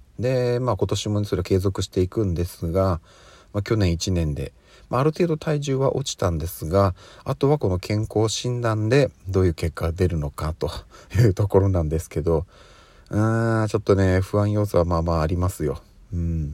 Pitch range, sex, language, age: 85-115 Hz, male, Japanese, 40-59